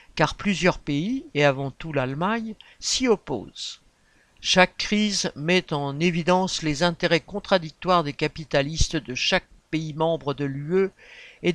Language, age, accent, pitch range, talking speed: French, 60-79, French, 150-200 Hz, 135 wpm